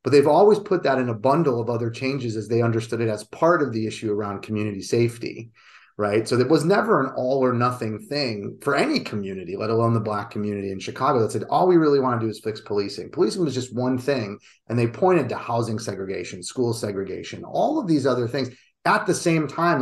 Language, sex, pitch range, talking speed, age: English, male, 110-130 Hz, 230 wpm, 30-49